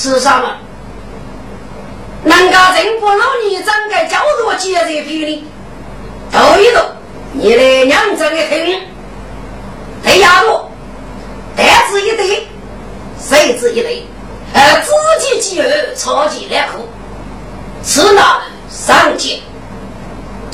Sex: female